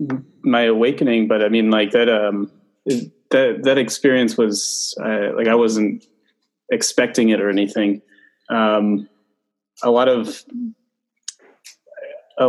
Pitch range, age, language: 105-130 Hz, 20-39, English